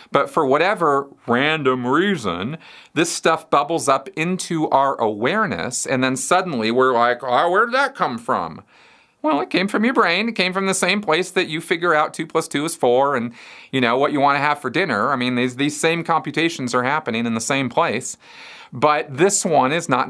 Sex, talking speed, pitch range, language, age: male, 210 wpm, 125-170 Hz, English, 40-59